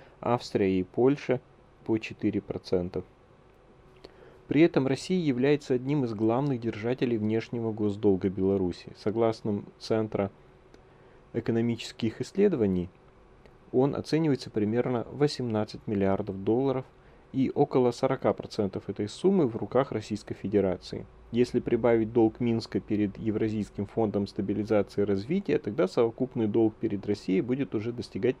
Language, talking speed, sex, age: Russian, 115 wpm, male, 30-49